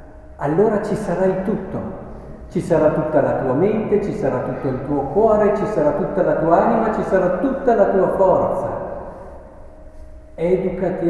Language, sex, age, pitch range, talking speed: Italian, male, 60-79, 140-190 Hz, 160 wpm